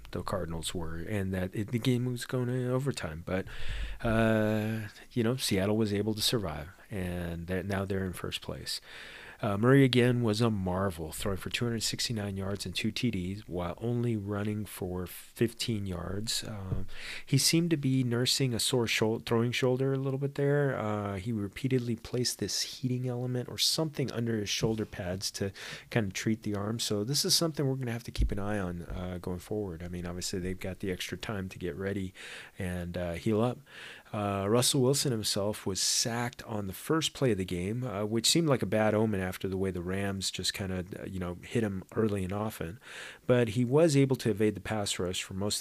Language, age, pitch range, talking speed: English, 30-49, 95-120 Hz, 205 wpm